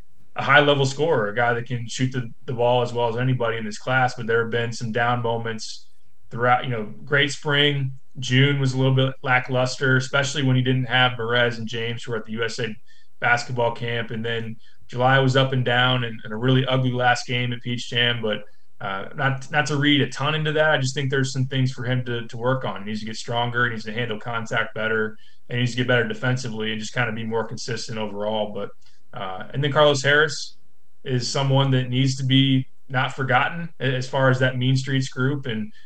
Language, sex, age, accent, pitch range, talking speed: English, male, 20-39, American, 115-130 Hz, 230 wpm